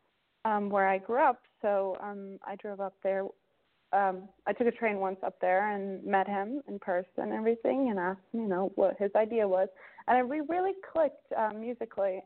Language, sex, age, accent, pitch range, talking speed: English, female, 30-49, American, 195-235 Hz, 195 wpm